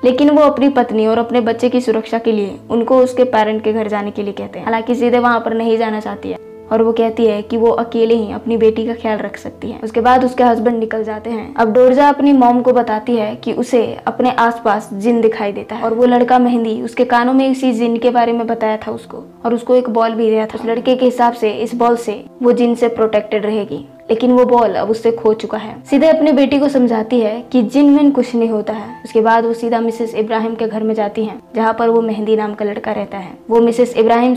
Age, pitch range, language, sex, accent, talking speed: 20-39, 220-245 Hz, Hindi, female, native, 250 wpm